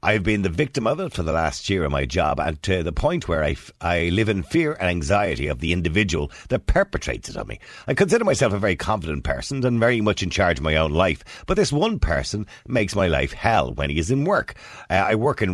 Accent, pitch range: Irish, 80-110 Hz